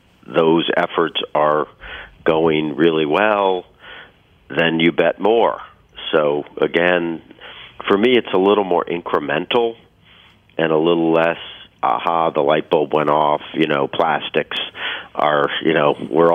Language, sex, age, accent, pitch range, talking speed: English, male, 50-69, American, 75-85 Hz, 130 wpm